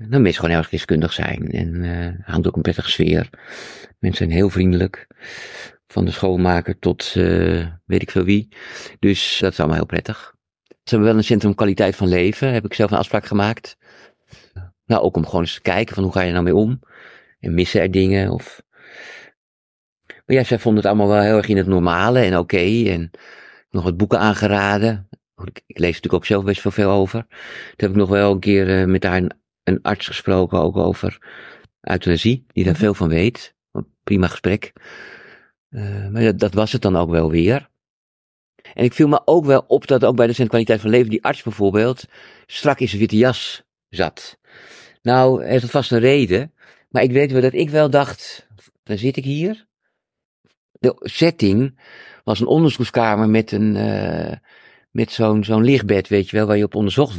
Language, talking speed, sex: Dutch, 200 wpm, male